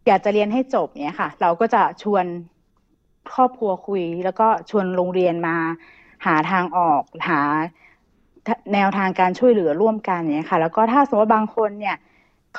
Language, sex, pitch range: Thai, female, 180-230 Hz